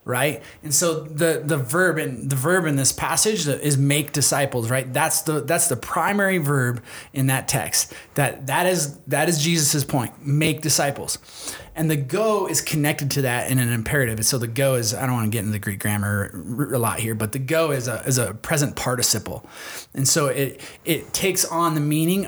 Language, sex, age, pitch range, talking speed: English, male, 20-39, 135-165 Hz, 210 wpm